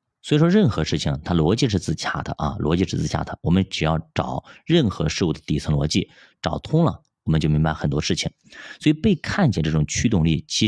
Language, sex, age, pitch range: Chinese, male, 20-39, 80-105 Hz